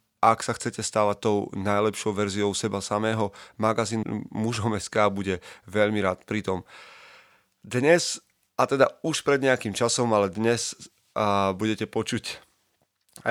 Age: 30-49